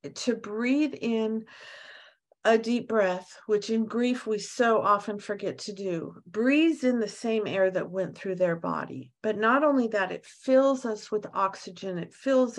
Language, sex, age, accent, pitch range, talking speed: English, female, 50-69, American, 185-230 Hz, 170 wpm